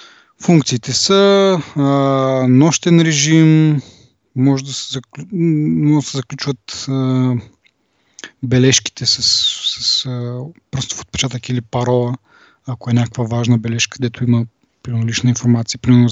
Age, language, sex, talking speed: 20-39, Bulgarian, male, 125 wpm